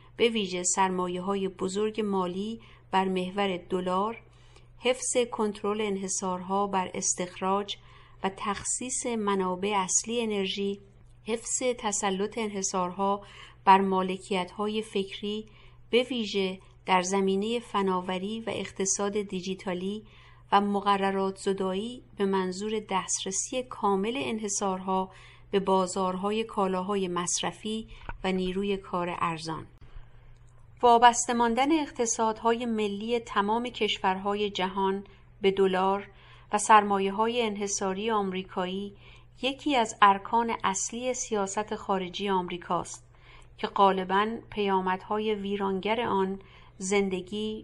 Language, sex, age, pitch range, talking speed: English, female, 50-69, 185-215 Hz, 95 wpm